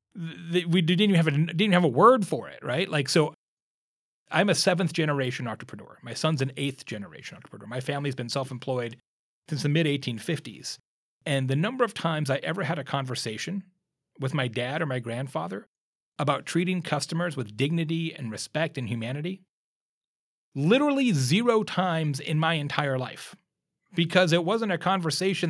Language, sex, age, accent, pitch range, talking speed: English, male, 30-49, American, 125-175 Hz, 160 wpm